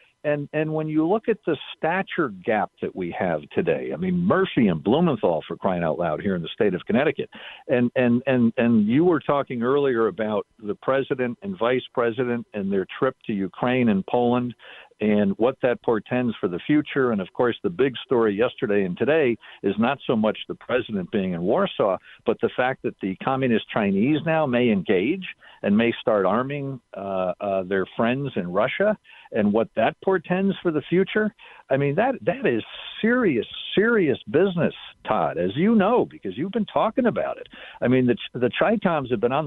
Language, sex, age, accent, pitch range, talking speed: English, male, 50-69, American, 120-190 Hz, 195 wpm